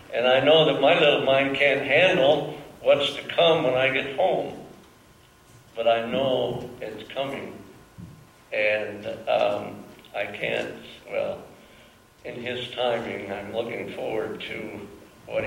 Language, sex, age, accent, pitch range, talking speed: English, male, 60-79, American, 115-150 Hz, 130 wpm